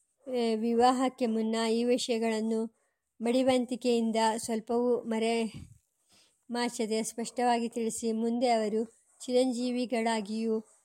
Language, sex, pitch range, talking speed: English, male, 225-240 Hz, 100 wpm